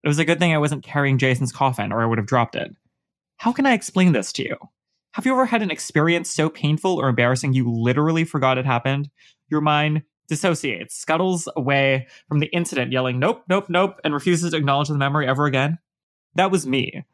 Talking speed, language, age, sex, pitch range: 215 wpm, English, 20-39, male, 130-175 Hz